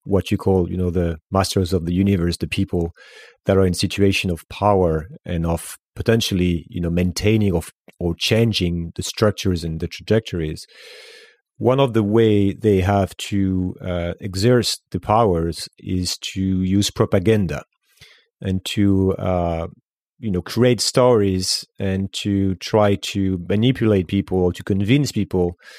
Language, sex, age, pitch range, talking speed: French, male, 30-49, 90-110 Hz, 150 wpm